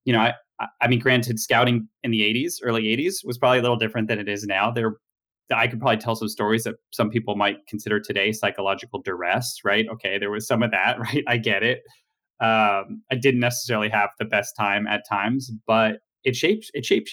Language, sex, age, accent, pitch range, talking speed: English, male, 30-49, American, 105-120 Hz, 215 wpm